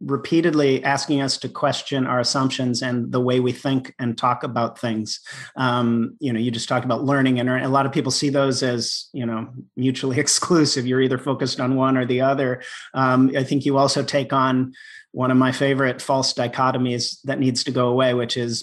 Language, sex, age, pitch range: English, male, 40-59, 130-145 Hz